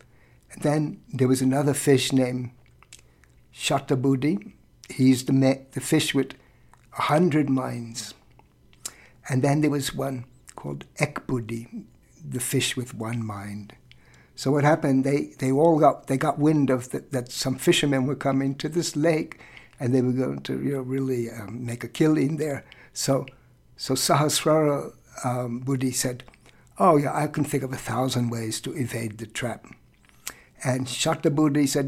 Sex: male